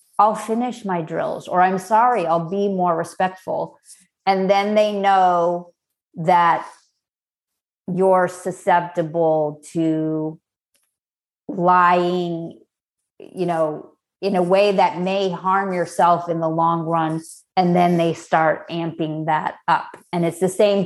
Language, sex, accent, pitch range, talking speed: English, female, American, 170-185 Hz, 125 wpm